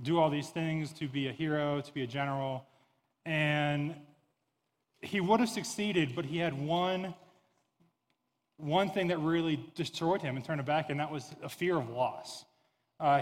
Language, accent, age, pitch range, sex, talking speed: English, American, 20-39, 140-165 Hz, male, 175 wpm